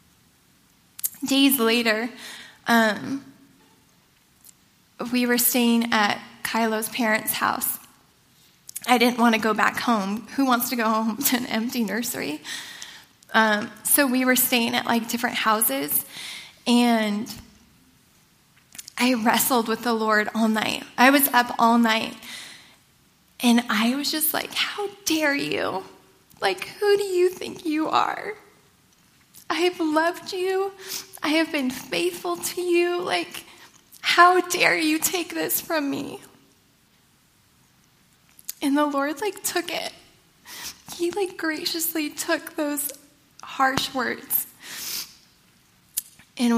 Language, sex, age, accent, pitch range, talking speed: English, female, 10-29, American, 235-310 Hz, 120 wpm